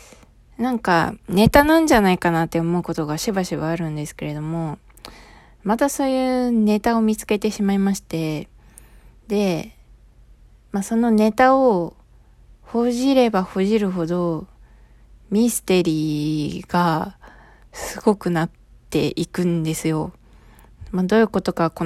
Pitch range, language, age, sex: 160-205 Hz, Japanese, 20-39, female